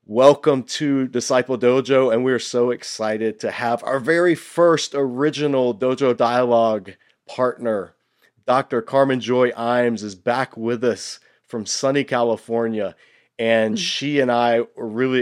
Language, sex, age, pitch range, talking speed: English, male, 30-49, 105-125 Hz, 140 wpm